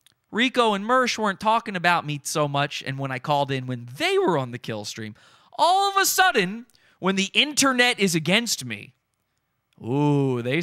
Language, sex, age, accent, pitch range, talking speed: English, male, 30-49, American, 135-195 Hz, 185 wpm